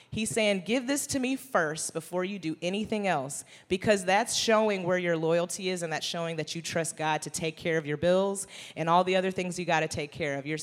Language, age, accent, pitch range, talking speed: English, 30-49, American, 155-195 Hz, 250 wpm